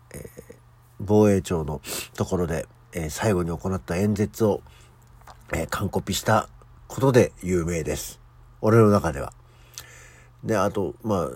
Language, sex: Japanese, male